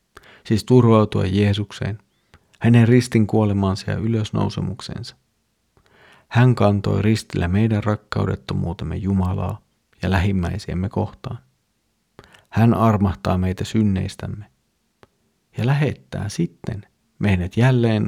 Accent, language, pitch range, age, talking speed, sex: native, Finnish, 95-110 Hz, 40-59, 85 wpm, male